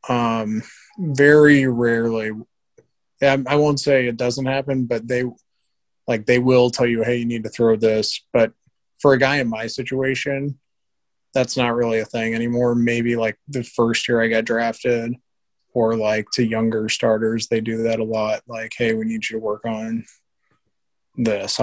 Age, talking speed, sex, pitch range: 20-39, 170 wpm, male, 115-130 Hz